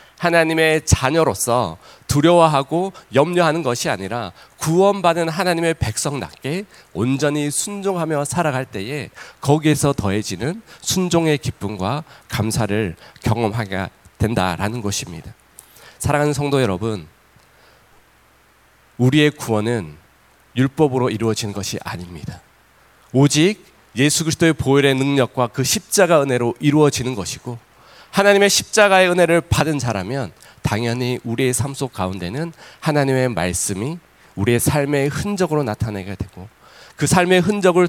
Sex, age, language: male, 40-59, Korean